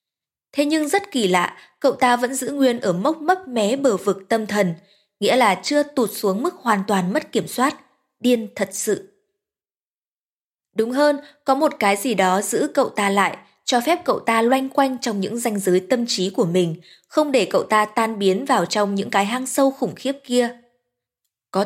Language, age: Vietnamese, 20-39